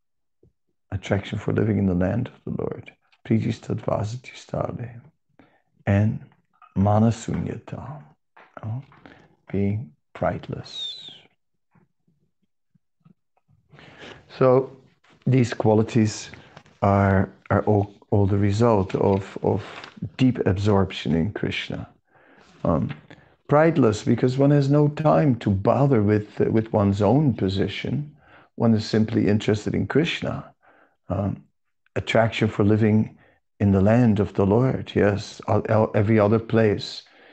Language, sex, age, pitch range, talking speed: English, male, 50-69, 100-120 Hz, 110 wpm